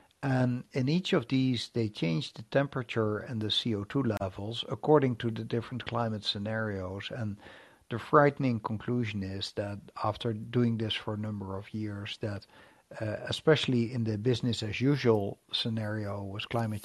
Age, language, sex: 60-79, English, male